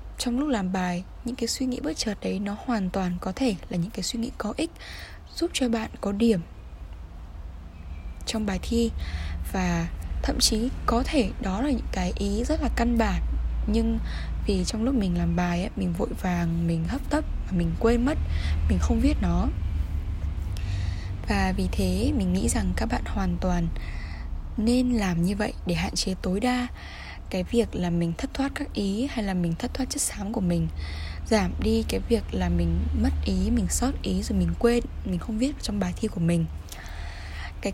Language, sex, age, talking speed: Vietnamese, female, 10-29, 195 wpm